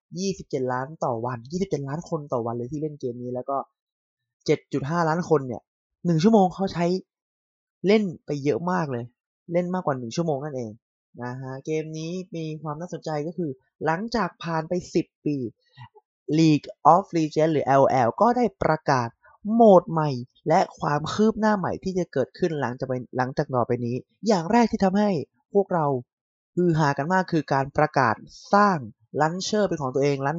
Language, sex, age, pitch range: Thai, male, 20-39, 125-165 Hz